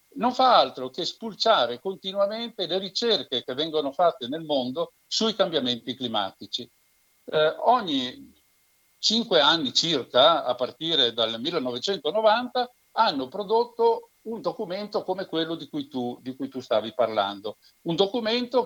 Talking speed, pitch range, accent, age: 125 wpm, 135-225 Hz, native, 60-79